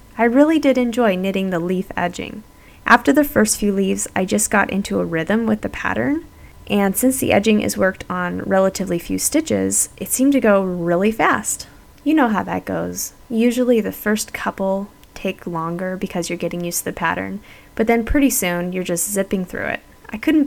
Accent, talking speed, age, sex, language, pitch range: American, 195 wpm, 10-29, female, English, 175-235 Hz